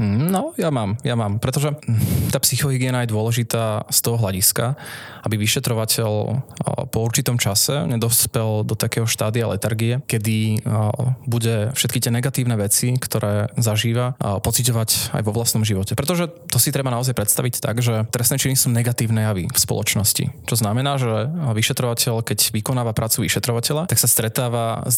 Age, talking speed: 20-39, 150 wpm